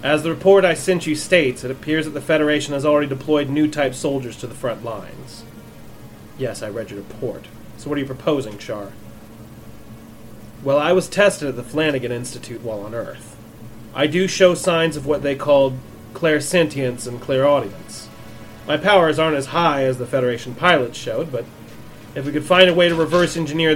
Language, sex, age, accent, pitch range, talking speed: English, male, 30-49, American, 115-160 Hz, 185 wpm